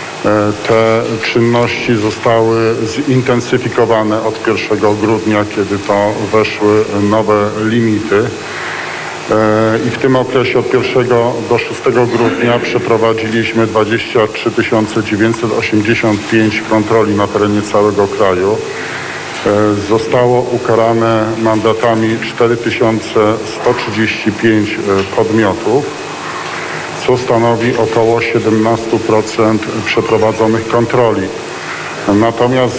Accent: native